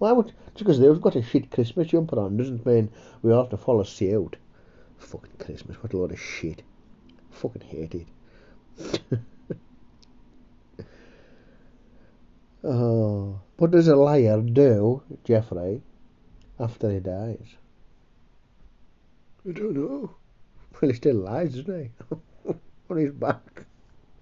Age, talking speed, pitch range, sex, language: 60-79, 130 wpm, 100-160 Hz, male, English